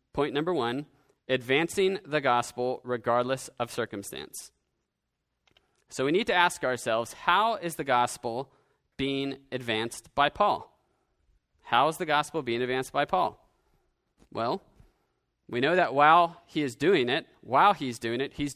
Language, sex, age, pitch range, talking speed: English, male, 30-49, 125-170 Hz, 145 wpm